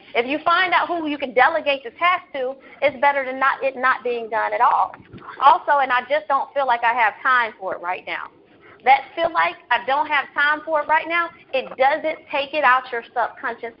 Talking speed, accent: 225 wpm, American